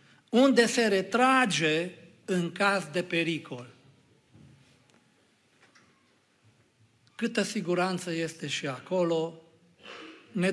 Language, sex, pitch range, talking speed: Romanian, male, 150-220 Hz, 75 wpm